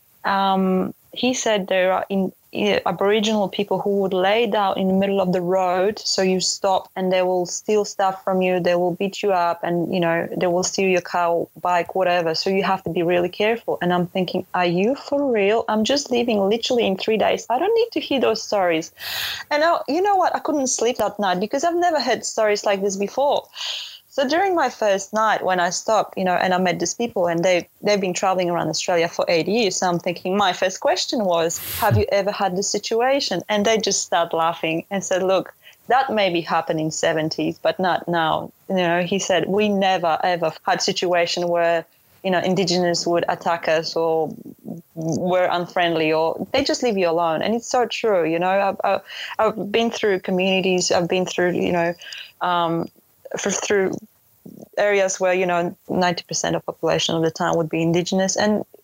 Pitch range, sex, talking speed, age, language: 175-215 Hz, female, 205 wpm, 20-39, English